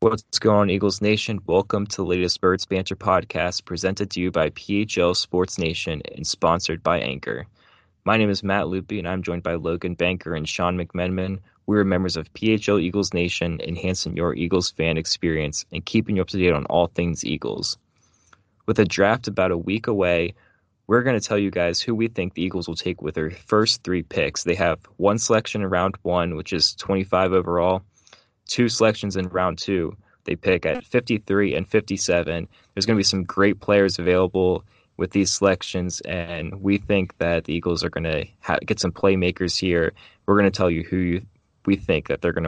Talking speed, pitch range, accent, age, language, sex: 200 wpm, 90-105 Hz, American, 20-39, English, male